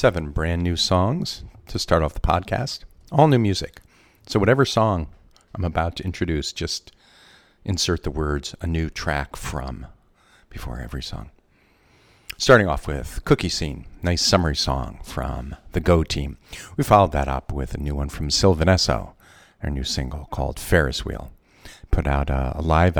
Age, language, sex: 50-69, English, male